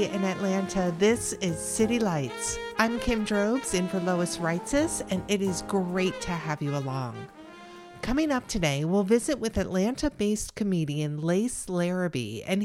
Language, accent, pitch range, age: English, American, 155-230 Hz, 50-69